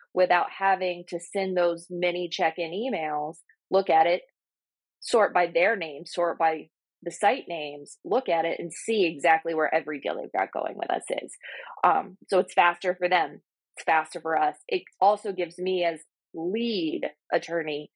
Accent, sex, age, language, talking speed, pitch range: American, female, 20-39, English, 175 wpm, 155-180 Hz